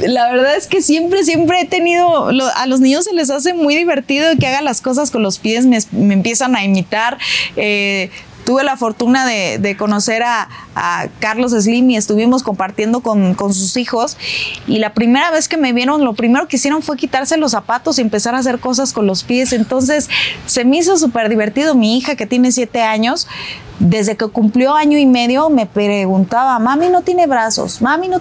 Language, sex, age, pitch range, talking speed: Spanish, female, 30-49, 210-275 Hz, 200 wpm